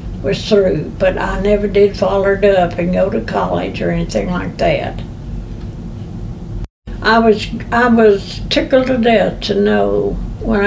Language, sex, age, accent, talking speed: English, female, 60-79, American, 150 wpm